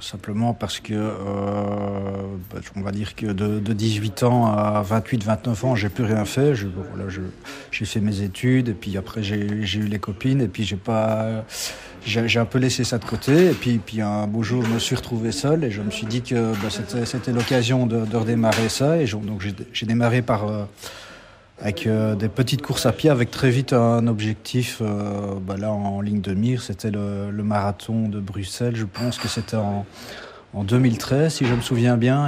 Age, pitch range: 40-59, 100-120 Hz